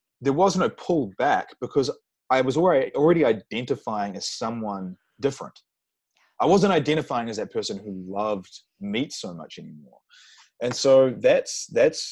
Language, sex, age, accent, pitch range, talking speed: English, male, 20-39, Australian, 105-160 Hz, 145 wpm